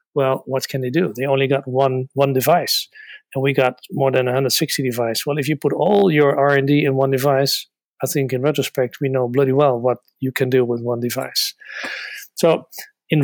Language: English